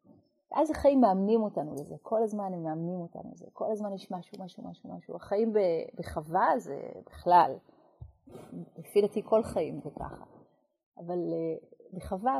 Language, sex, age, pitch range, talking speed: Hebrew, female, 30-49, 195-245 Hz, 155 wpm